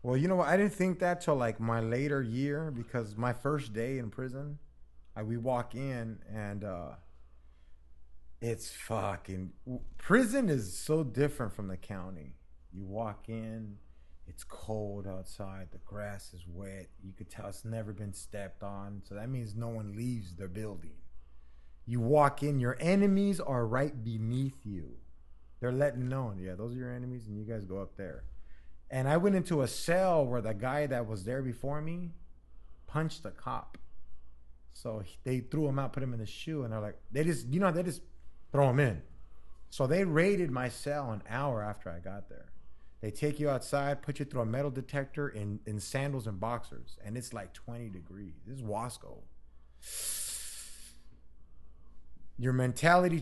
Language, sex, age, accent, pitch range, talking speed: English, male, 30-49, American, 90-135 Hz, 175 wpm